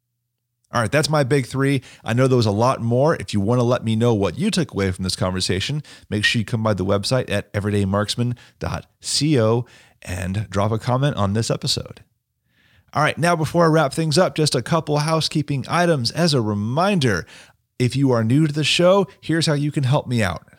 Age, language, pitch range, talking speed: 30-49, English, 110-145 Hz, 215 wpm